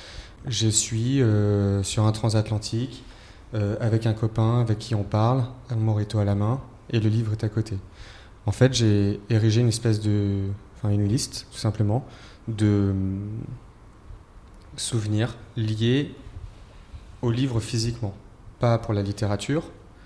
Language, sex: French, male